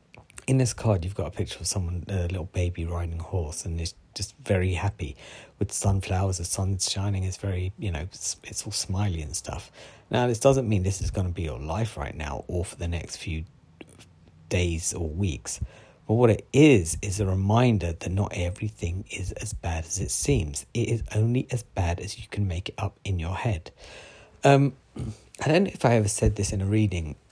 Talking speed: 215 wpm